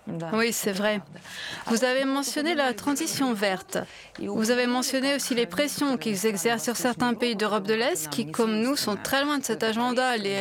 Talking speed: 190 wpm